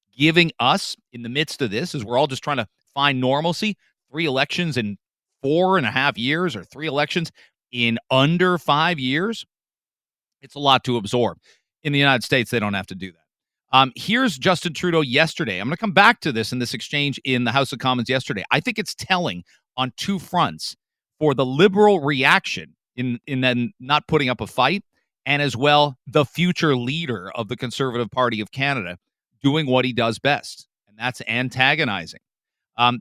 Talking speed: 195 wpm